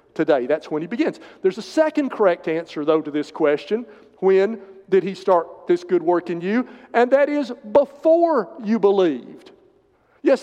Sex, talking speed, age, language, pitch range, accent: male, 175 wpm, 50-69, English, 165-235 Hz, American